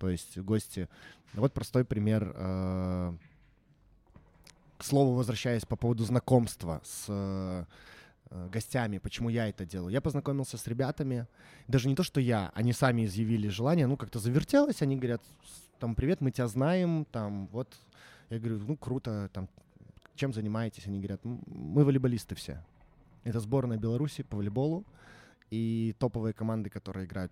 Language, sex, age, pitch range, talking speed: Russian, male, 20-39, 105-135 Hz, 145 wpm